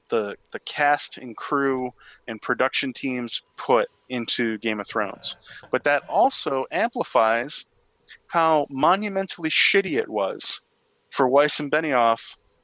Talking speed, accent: 125 wpm, American